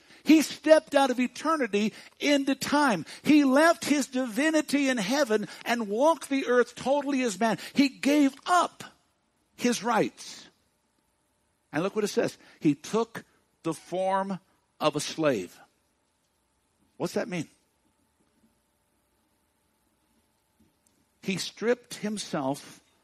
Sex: male